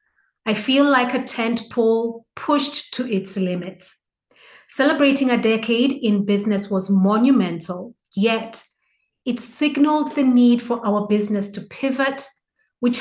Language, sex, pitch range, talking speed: English, female, 195-245 Hz, 130 wpm